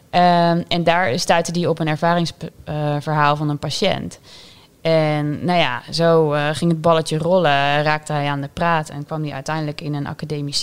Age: 20-39